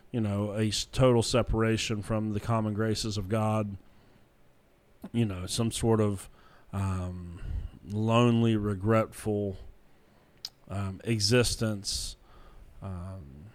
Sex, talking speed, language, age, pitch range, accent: male, 95 wpm, English, 30-49, 105-120 Hz, American